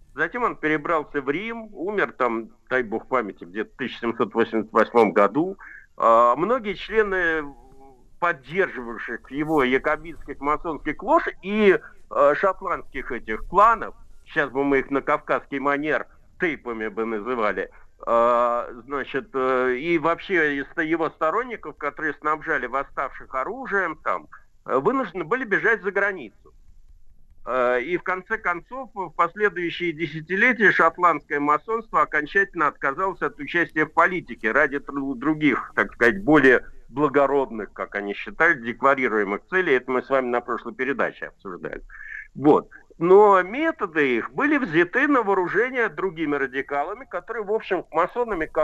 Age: 50-69